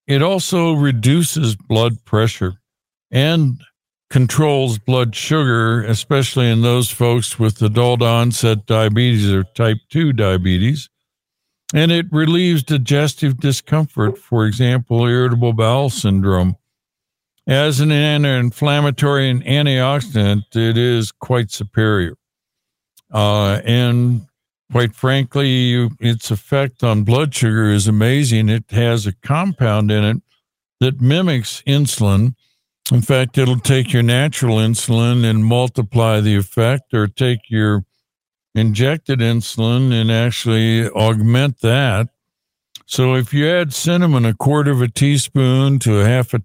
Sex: male